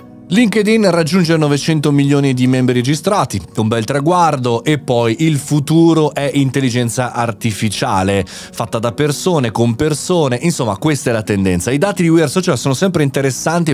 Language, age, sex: Italian, 30-49, male